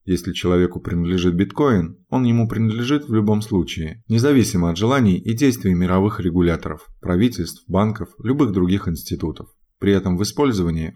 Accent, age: native, 20-39